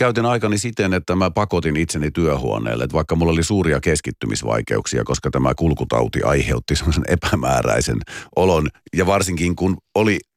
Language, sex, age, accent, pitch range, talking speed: Finnish, male, 50-69, native, 75-105 Hz, 145 wpm